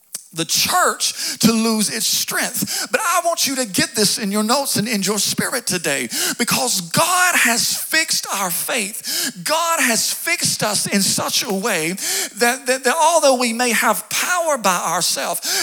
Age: 40-59